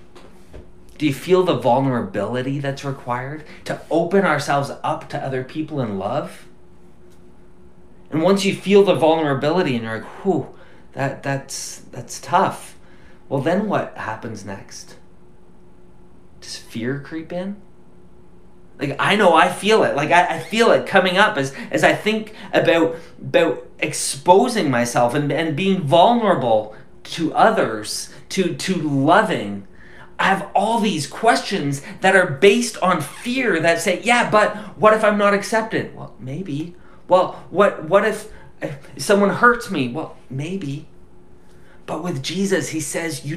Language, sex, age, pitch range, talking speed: English, male, 30-49, 115-180 Hz, 145 wpm